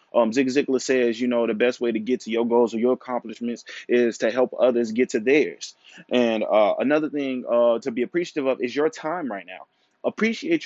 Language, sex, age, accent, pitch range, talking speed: English, male, 20-39, American, 115-150 Hz, 220 wpm